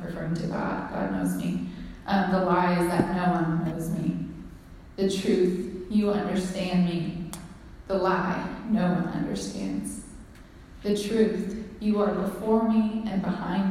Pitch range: 175-200 Hz